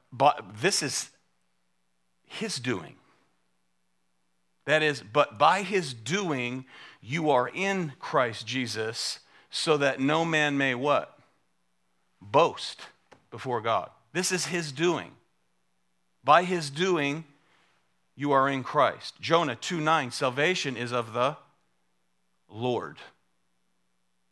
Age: 40-59